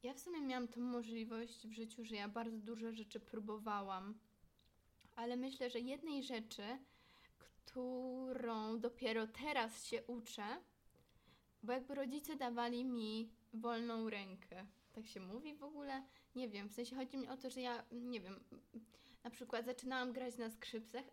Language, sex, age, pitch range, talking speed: Polish, female, 20-39, 225-255 Hz, 155 wpm